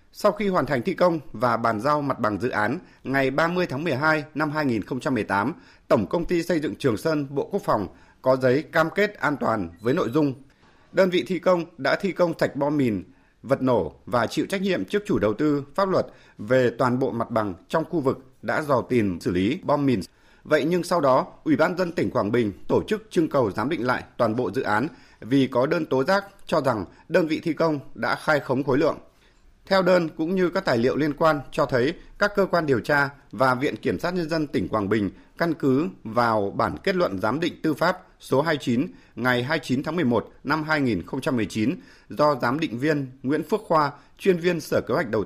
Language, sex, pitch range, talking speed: Vietnamese, male, 125-175 Hz, 225 wpm